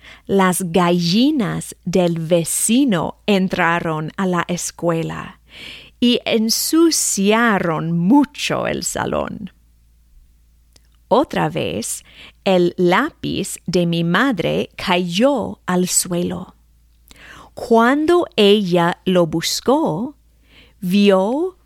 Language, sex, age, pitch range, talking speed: English, female, 40-59, 160-230 Hz, 80 wpm